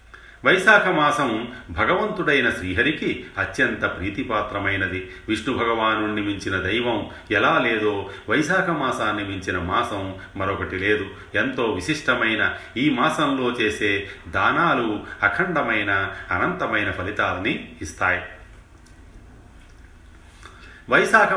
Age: 40-59